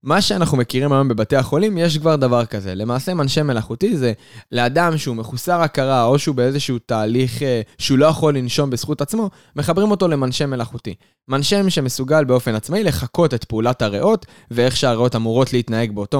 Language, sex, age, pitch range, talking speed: Hebrew, male, 20-39, 115-155 Hz, 175 wpm